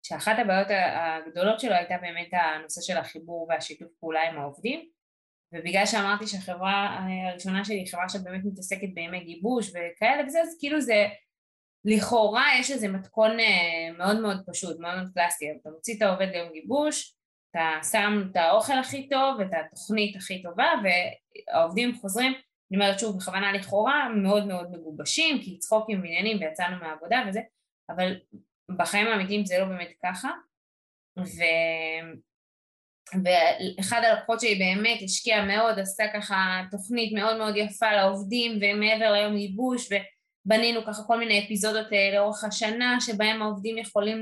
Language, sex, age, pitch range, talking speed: Hebrew, female, 20-39, 185-225 Hz, 140 wpm